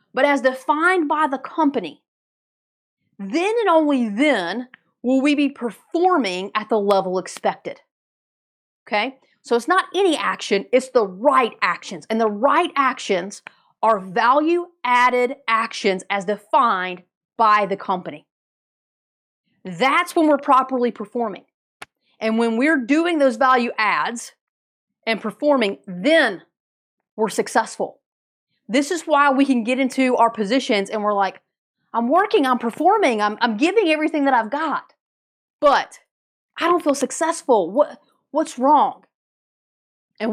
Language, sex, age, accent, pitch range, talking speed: English, female, 40-59, American, 220-295 Hz, 130 wpm